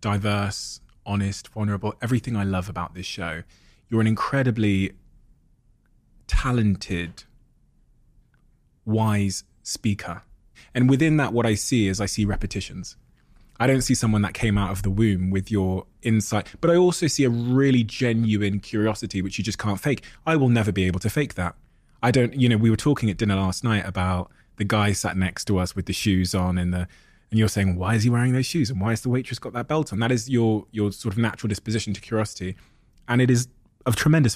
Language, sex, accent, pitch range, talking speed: English, male, British, 100-120 Hz, 205 wpm